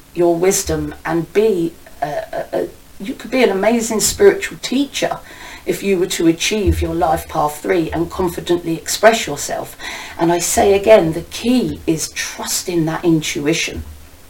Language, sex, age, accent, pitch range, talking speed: English, female, 40-59, British, 170-240 Hz, 160 wpm